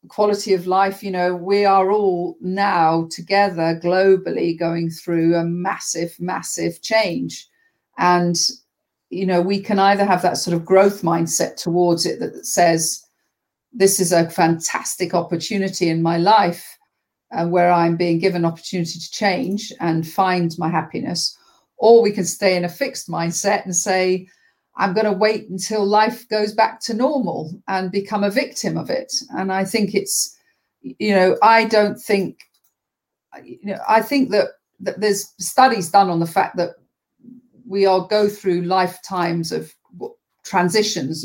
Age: 50-69